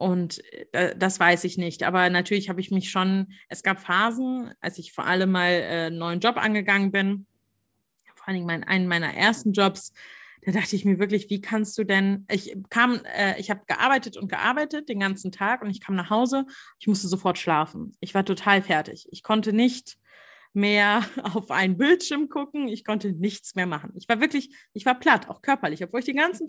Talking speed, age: 195 wpm, 30-49